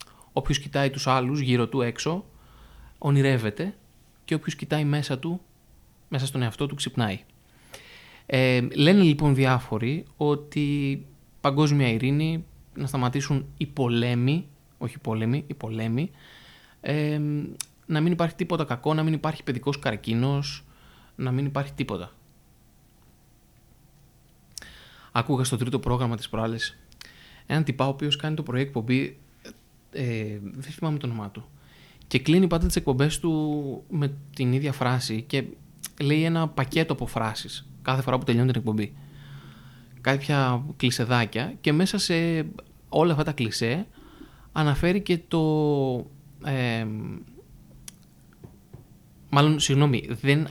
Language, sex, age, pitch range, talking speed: Greek, male, 20-39, 120-150 Hz, 125 wpm